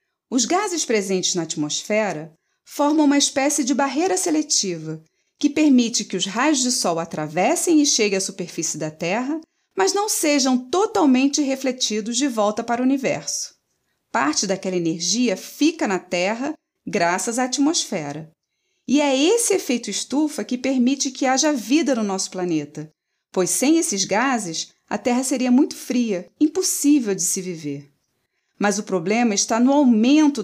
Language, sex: Portuguese, female